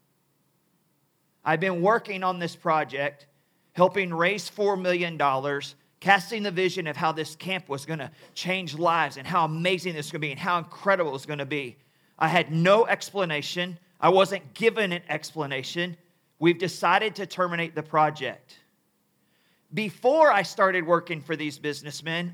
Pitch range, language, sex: 155-190 Hz, English, male